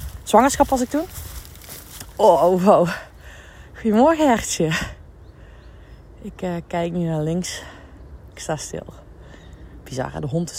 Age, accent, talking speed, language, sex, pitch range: 20-39, Dutch, 120 wpm, Dutch, female, 140-185 Hz